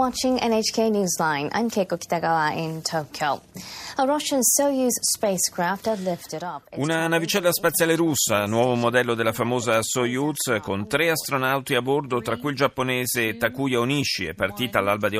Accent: native